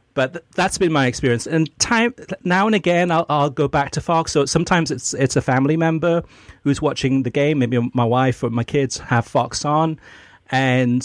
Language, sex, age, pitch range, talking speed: English, male, 40-59, 125-165 Hz, 200 wpm